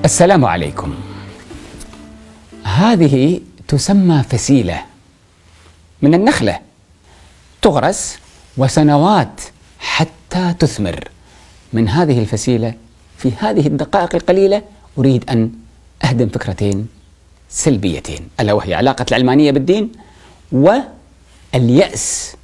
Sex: male